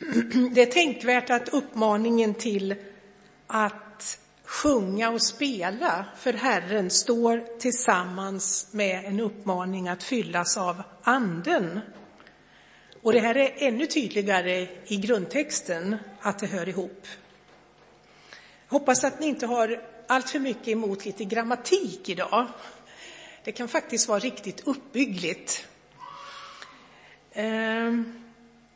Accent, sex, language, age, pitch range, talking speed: native, female, Swedish, 60-79, 200-255 Hz, 110 wpm